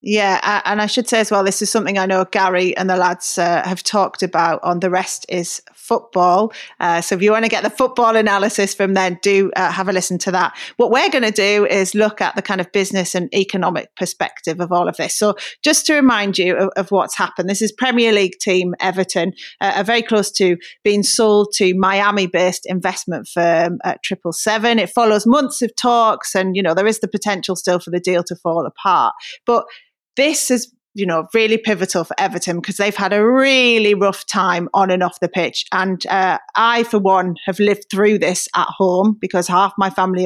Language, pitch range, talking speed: English, 180-215 Hz, 220 wpm